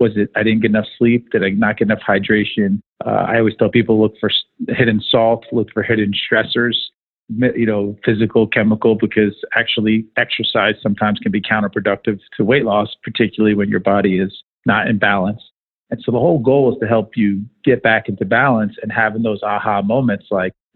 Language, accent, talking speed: English, American, 195 wpm